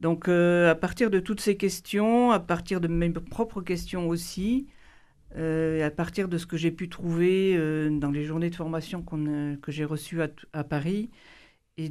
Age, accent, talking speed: 50-69, French, 195 wpm